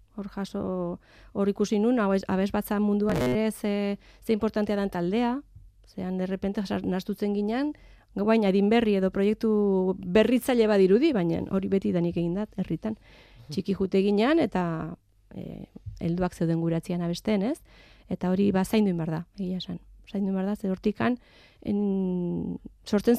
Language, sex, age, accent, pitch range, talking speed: Spanish, female, 20-39, Spanish, 175-205 Hz, 125 wpm